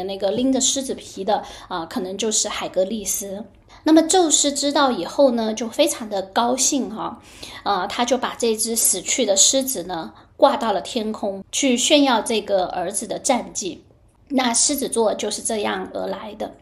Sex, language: female, Chinese